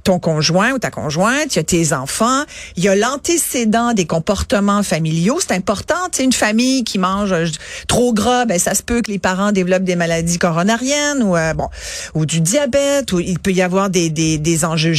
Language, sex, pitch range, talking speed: French, female, 175-240 Hz, 210 wpm